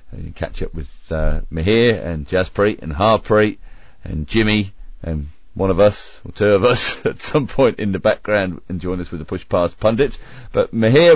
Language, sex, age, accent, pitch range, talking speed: English, male, 40-59, British, 80-100 Hz, 200 wpm